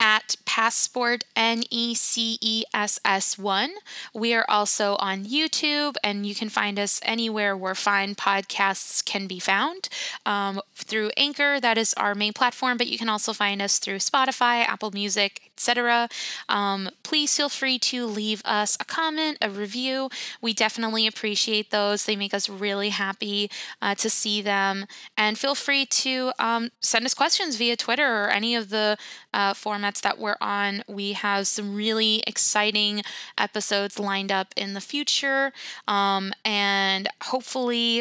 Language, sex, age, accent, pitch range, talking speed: English, female, 10-29, American, 205-245 Hz, 155 wpm